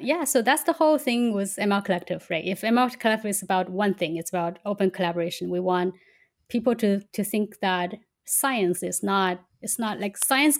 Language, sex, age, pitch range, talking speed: English, female, 20-39, 190-225 Hz, 200 wpm